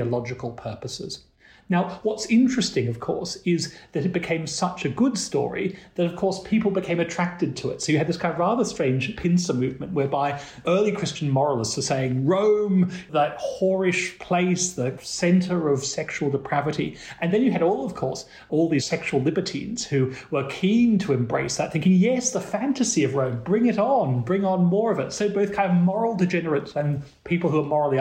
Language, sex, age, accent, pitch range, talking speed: English, male, 40-59, British, 140-200 Hz, 195 wpm